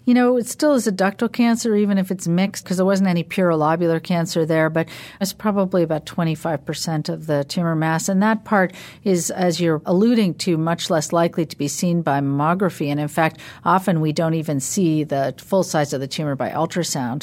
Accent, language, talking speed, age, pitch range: American, English, 210 wpm, 50-69, 155-195 Hz